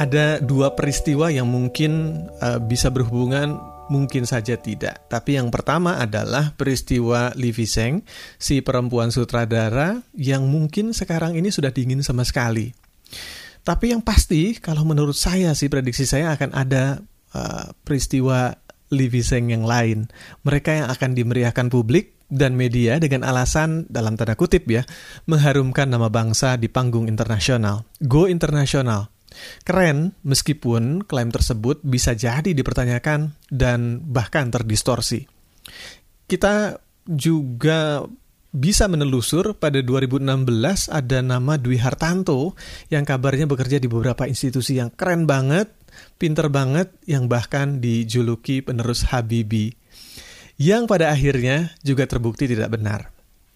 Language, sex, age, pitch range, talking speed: Indonesian, male, 40-59, 120-155 Hz, 120 wpm